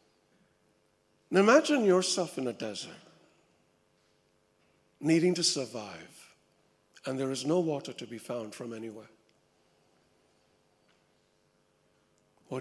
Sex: male